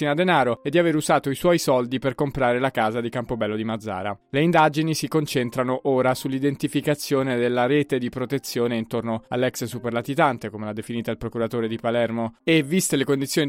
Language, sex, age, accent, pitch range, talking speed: Italian, male, 20-39, native, 120-145 Hz, 185 wpm